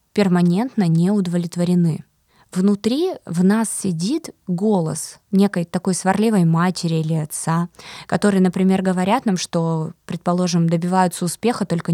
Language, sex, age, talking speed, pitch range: Russian, female, 20-39, 115 wpm, 175-205 Hz